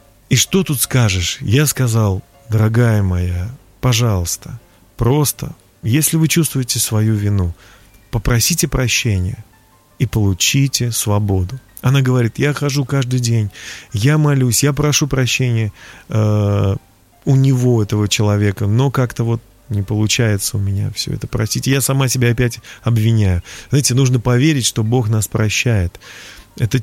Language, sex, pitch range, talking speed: Russian, male, 105-135 Hz, 130 wpm